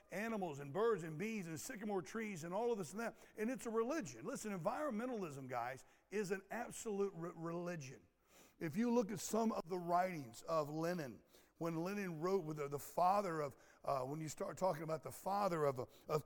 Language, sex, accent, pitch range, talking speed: English, male, American, 155-210 Hz, 195 wpm